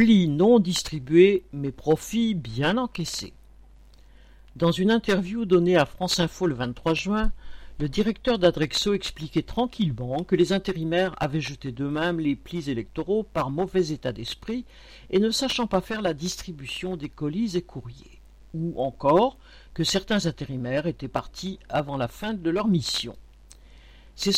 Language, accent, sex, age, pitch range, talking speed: French, French, male, 50-69, 135-195 Hz, 150 wpm